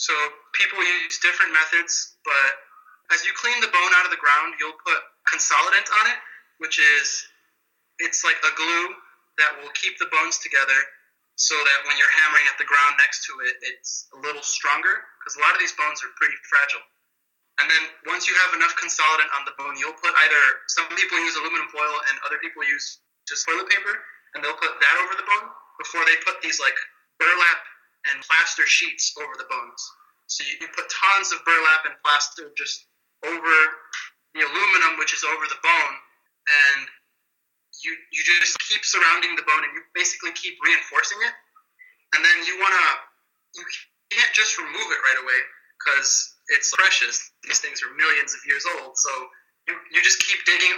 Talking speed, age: 190 wpm, 20-39